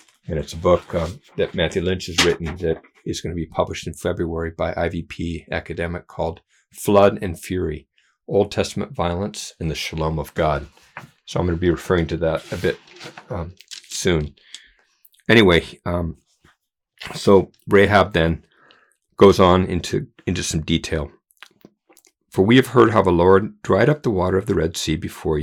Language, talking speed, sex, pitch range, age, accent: English, 170 wpm, male, 80-95 Hz, 50-69, American